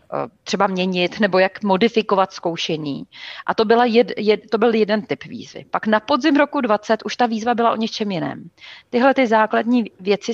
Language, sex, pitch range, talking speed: Czech, female, 195-230 Hz, 170 wpm